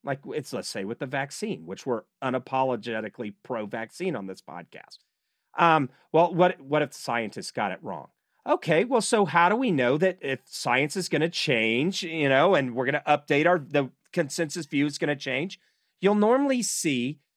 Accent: American